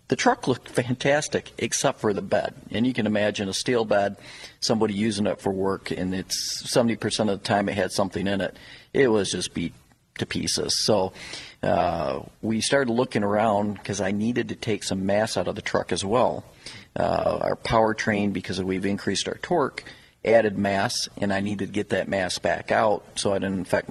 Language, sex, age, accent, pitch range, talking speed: English, male, 50-69, American, 100-120 Hz, 200 wpm